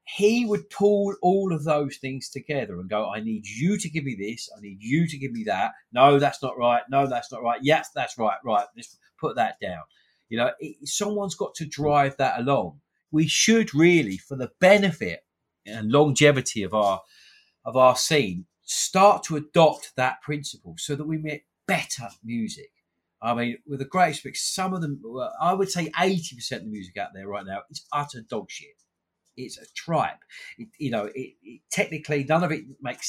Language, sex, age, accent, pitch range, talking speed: English, male, 30-49, British, 120-170 Hz, 200 wpm